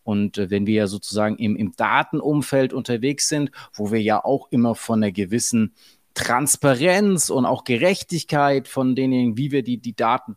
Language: German